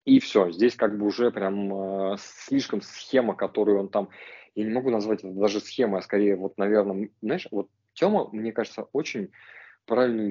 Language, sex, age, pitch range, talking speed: Russian, male, 20-39, 105-125 Hz, 180 wpm